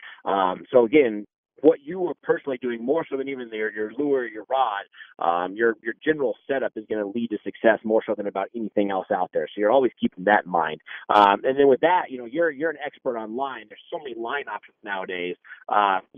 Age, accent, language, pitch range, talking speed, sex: 30-49, American, English, 110-150 Hz, 235 wpm, male